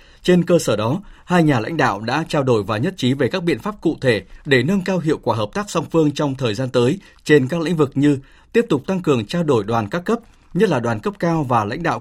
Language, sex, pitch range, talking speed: Vietnamese, male, 130-170 Hz, 275 wpm